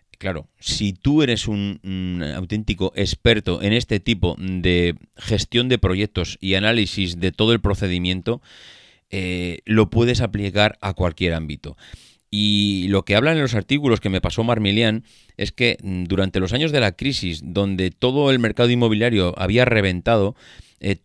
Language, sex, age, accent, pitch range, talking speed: Spanish, male, 30-49, Spanish, 95-120 Hz, 155 wpm